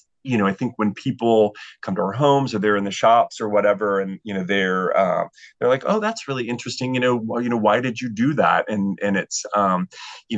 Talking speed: 245 wpm